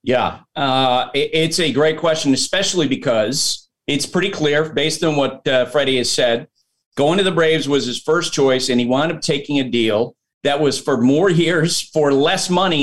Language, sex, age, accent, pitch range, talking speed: English, male, 40-59, American, 130-160 Hz, 190 wpm